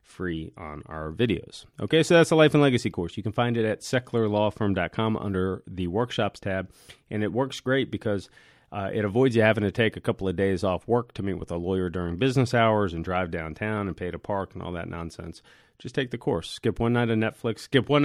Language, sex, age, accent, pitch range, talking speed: English, male, 30-49, American, 95-120 Hz, 240 wpm